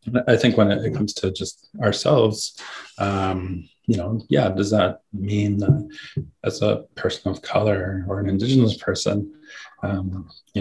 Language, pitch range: English, 95-120 Hz